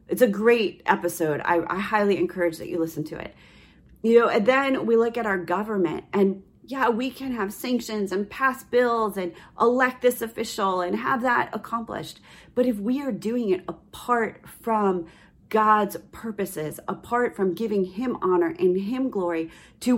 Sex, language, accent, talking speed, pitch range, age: female, English, American, 175 wpm, 160-215 Hz, 30-49